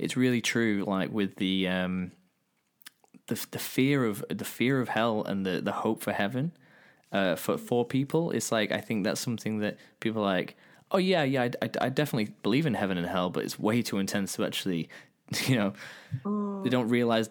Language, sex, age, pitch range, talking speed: English, male, 20-39, 95-130 Hz, 205 wpm